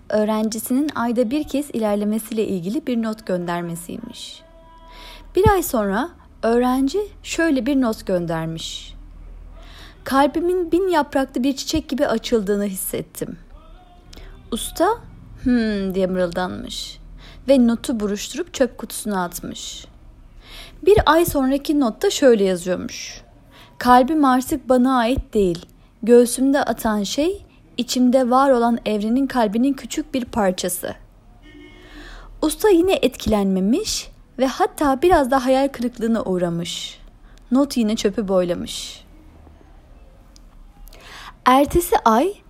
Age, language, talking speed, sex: 30-49, Turkish, 105 wpm, female